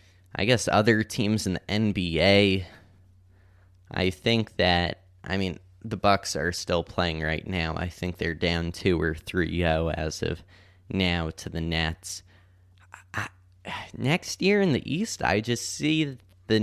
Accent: American